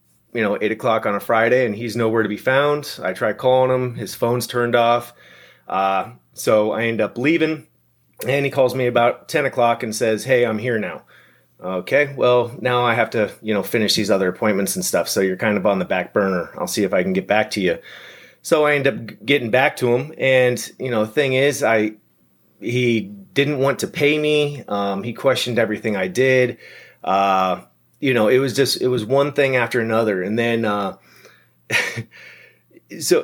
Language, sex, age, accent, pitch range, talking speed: English, male, 30-49, American, 110-135 Hz, 205 wpm